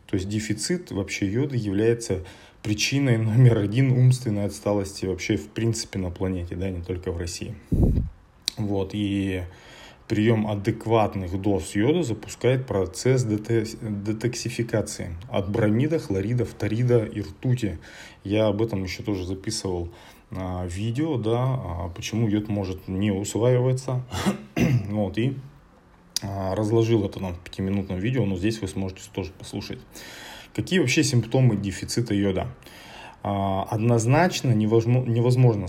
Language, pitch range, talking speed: Russian, 95-115 Hz, 120 wpm